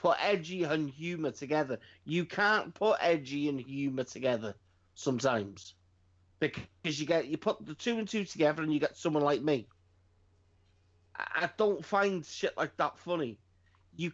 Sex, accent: male, British